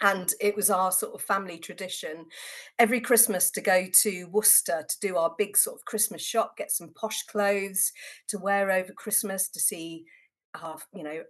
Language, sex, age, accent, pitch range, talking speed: English, female, 40-59, British, 175-225 Hz, 175 wpm